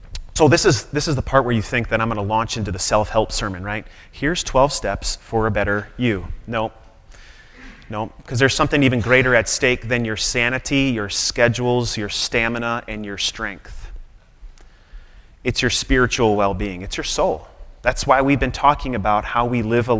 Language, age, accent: English, 30-49, American